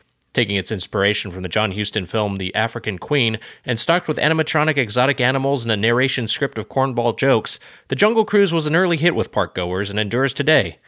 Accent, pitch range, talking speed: American, 105-145 Hz, 200 wpm